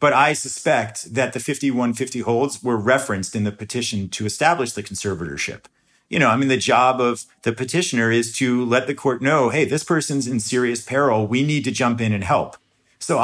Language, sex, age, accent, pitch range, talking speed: English, male, 40-59, American, 110-135 Hz, 205 wpm